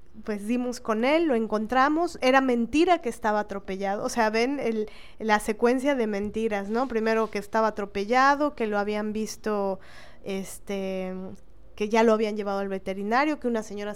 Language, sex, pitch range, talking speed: Spanish, female, 205-255 Hz, 170 wpm